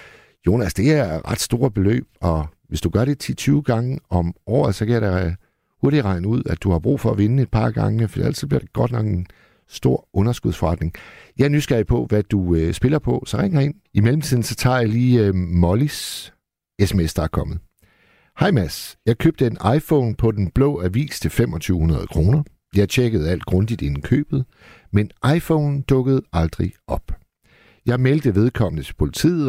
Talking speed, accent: 185 wpm, native